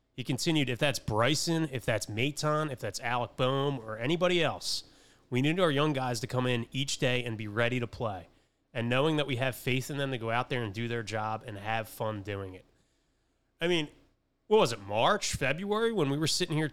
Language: English